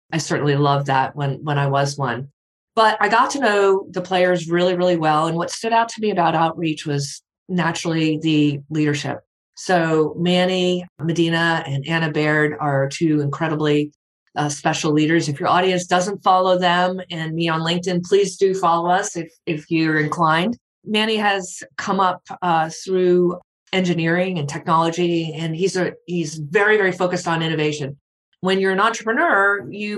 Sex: female